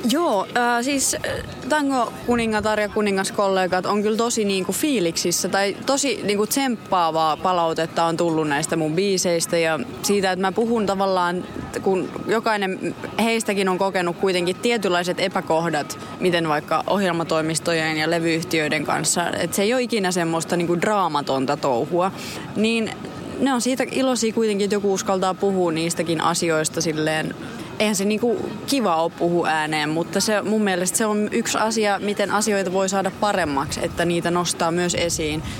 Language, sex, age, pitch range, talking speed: Finnish, female, 20-39, 170-215 Hz, 155 wpm